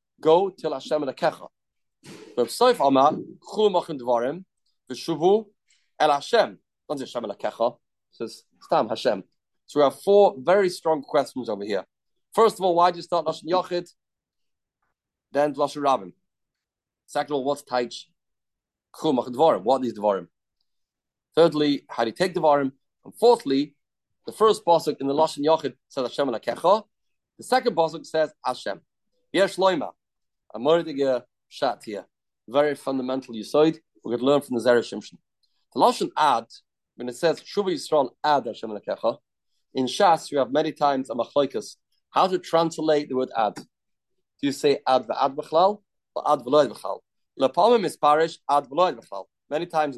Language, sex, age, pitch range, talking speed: English, male, 30-49, 130-170 Hz, 160 wpm